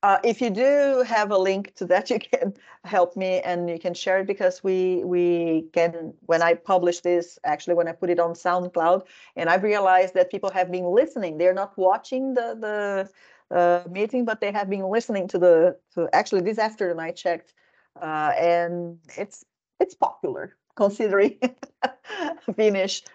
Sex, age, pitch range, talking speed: female, 40-59, 175-215 Hz, 175 wpm